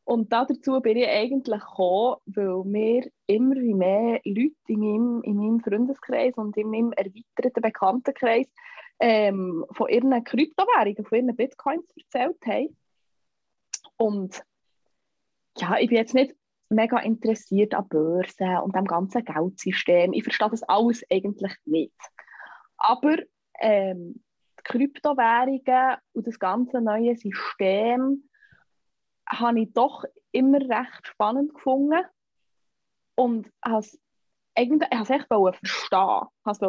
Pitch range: 205-260 Hz